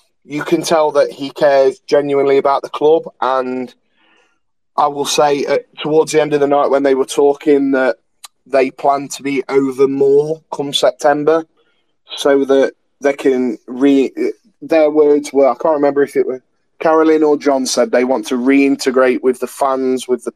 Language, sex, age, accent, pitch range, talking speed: English, male, 20-39, British, 130-150 Hz, 180 wpm